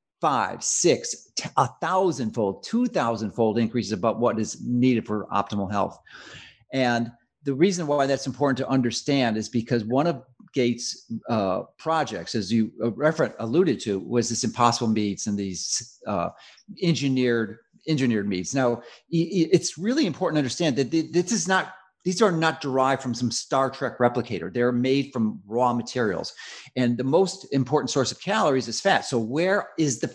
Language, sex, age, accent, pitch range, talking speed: English, male, 40-59, American, 120-190 Hz, 160 wpm